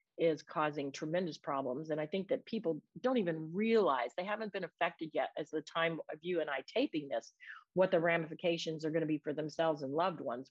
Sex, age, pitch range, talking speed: female, 50-69, 150-180 Hz, 210 wpm